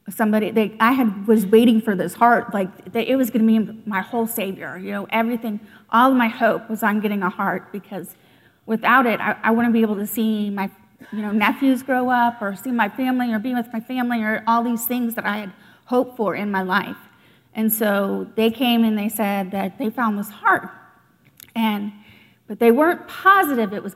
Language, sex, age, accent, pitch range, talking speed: English, female, 30-49, American, 205-235 Hz, 220 wpm